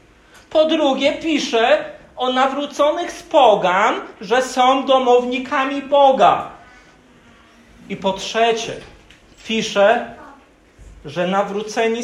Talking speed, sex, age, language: 85 wpm, male, 50-69, Polish